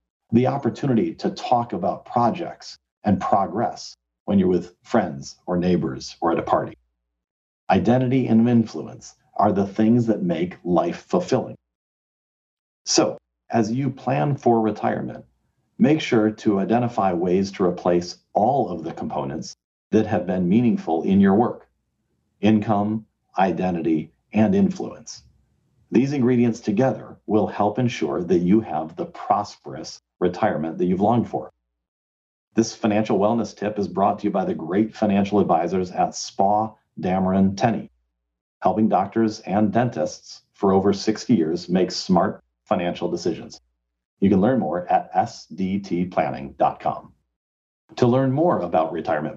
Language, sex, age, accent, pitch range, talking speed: English, male, 50-69, American, 75-110 Hz, 135 wpm